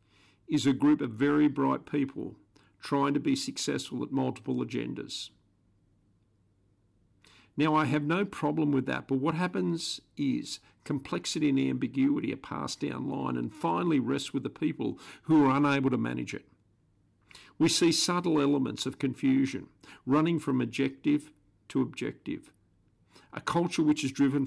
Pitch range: 100-150 Hz